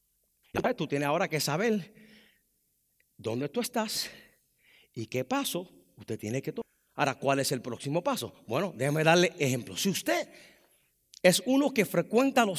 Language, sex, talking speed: English, male, 155 wpm